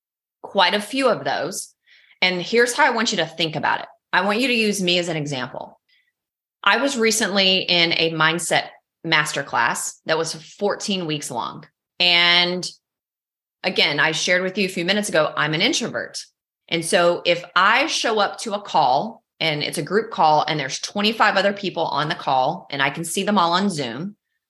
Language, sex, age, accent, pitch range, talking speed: English, female, 30-49, American, 155-205 Hz, 195 wpm